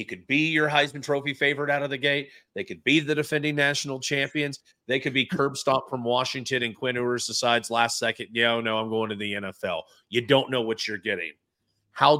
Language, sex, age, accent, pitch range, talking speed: English, male, 40-59, American, 135-175 Hz, 230 wpm